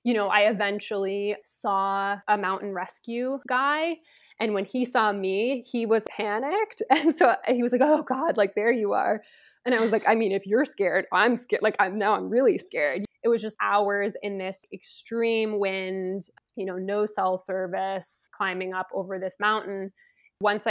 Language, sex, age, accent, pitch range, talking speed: English, female, 20-39, American, 195-230 Hz, 185 wpm